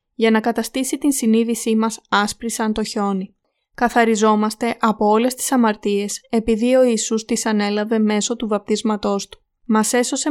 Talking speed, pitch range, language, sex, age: 150 wpm, 205-235 Hz, Greek, female, 20-39